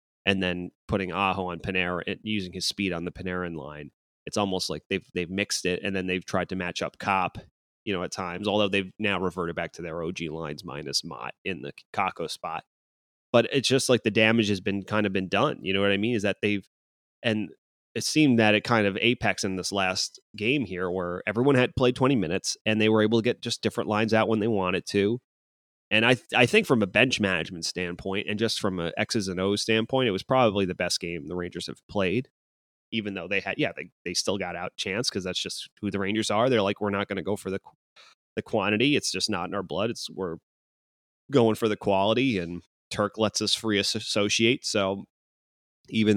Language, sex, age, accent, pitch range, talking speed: English, male, 30-49, American, 90-110 Hz, 235 wpm